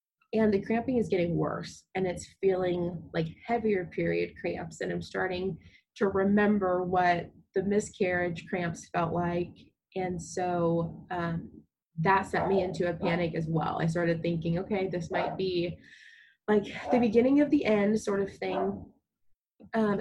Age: 20-39